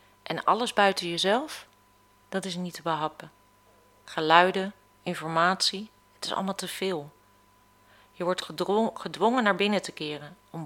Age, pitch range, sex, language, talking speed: 40-59, 135-190 Hz, female, Dutch, 135 wpm